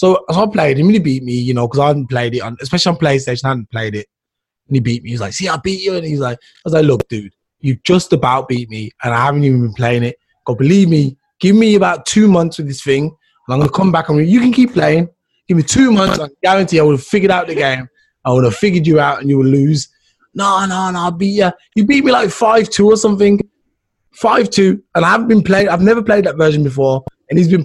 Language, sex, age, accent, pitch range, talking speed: English, male, 20-39, British, 140-195 Hz, 280 wpm